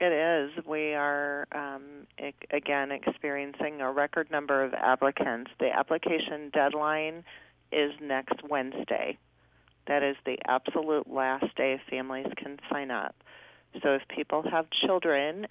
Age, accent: 40-59, American